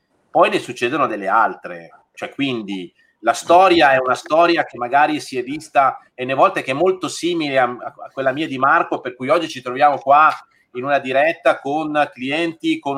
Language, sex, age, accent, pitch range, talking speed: Italian, male, 30-49, native, 115-145 Hz, 195 wpm